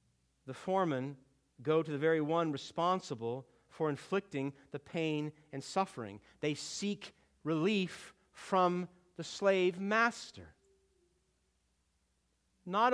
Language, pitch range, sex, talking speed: English, 140-210 Hz, male, 100 wpm